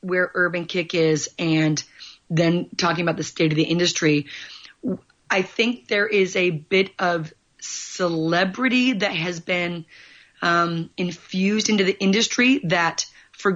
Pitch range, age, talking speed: 170-195 Hz, 30-49, 135 wpm